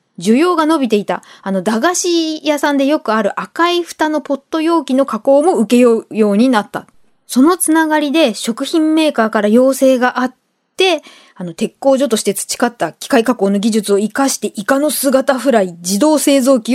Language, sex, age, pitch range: Japanese, female, 20-39, 230-320 Hz